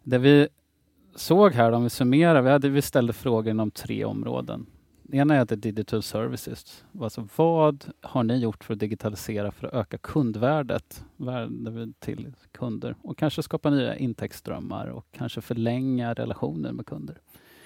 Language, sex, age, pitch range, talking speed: Swedish, male, 30-49, 110-140 Hz, 160 wpm